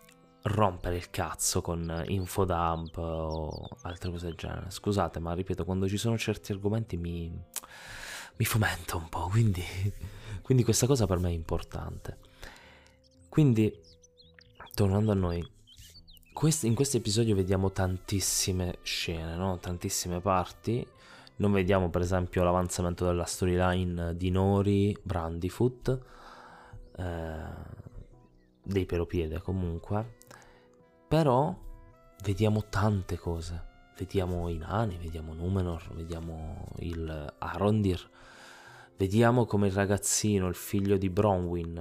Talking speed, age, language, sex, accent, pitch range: 115 wpm, 20-39, Italian, male, native, 85-105 Hz